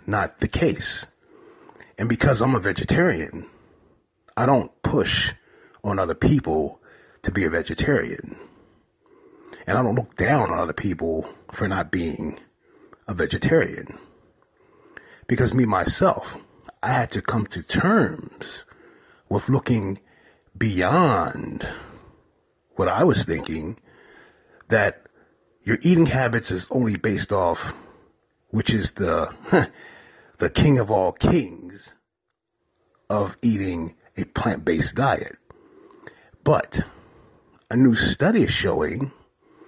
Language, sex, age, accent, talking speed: English, male, 30-49, American, 110 wpm